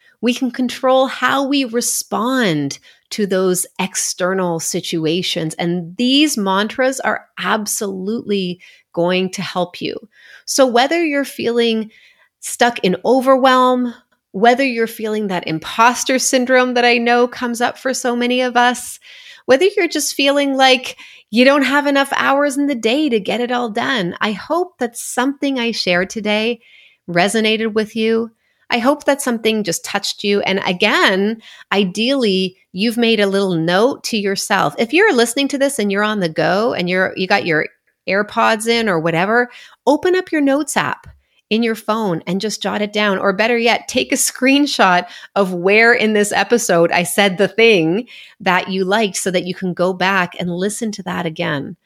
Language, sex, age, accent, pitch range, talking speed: English, female, 30-49, American, 190-255 Hz, 170 wpm